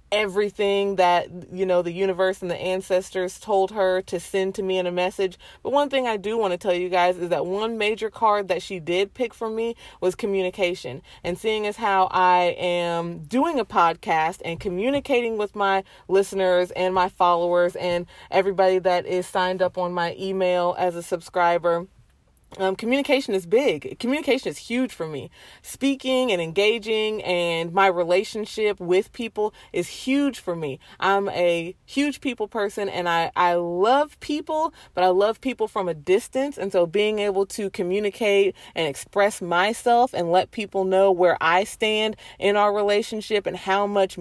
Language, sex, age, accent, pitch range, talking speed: English, female, 30-49, American, 180-220 Hz, 175 wpm